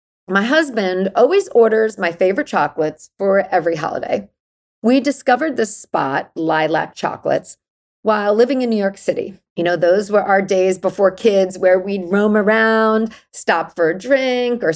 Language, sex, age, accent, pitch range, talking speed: English, female, 40-59, American, 185-255 Hz, 160 wpm